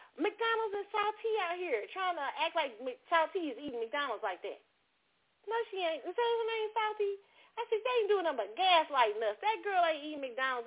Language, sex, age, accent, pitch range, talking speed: English, female, 30-49, American, 280-415 Hz, 210 wpm